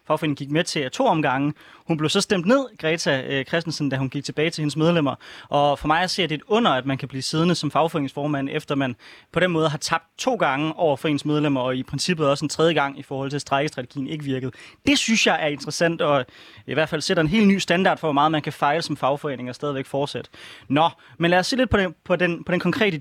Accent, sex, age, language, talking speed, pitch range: native, male, 20-39, Danish, 260 wpm, 145-180 Hz